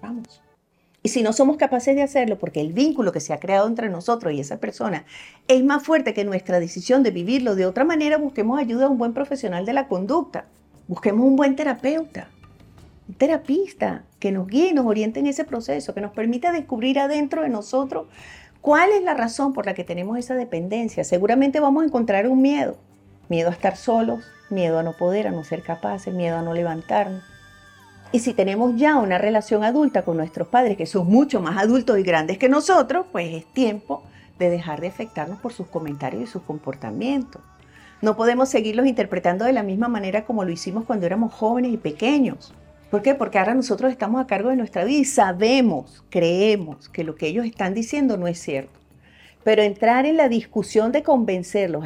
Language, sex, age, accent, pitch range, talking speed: English, female, 40-59, American, 175-255 Hz, 200 wpm